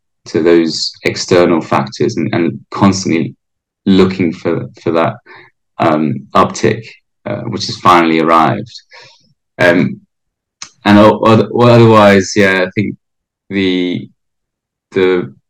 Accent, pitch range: British, 90-105 Hz